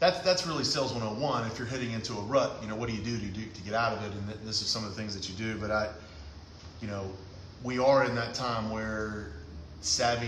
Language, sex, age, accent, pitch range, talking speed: English, male, 30-49, American, 100-115 Hz, 255 wpm